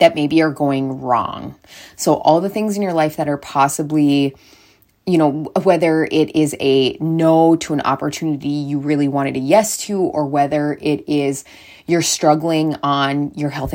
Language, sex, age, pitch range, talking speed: English, female, 20-39, 140-165 Hz, 175 wpm